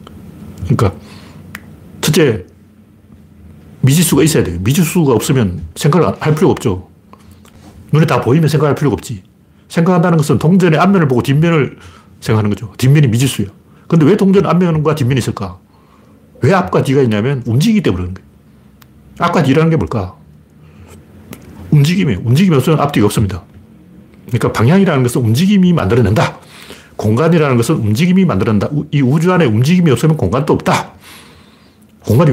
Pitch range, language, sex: 100-160 Hz, Korean, male